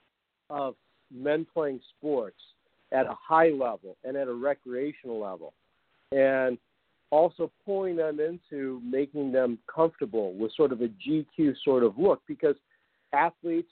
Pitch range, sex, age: 125-155 Hz, male, 50-69